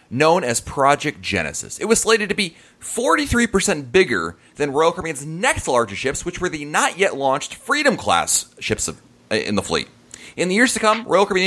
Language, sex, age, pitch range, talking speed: English, male, 30-49, 120-185 Hz, 180 wpm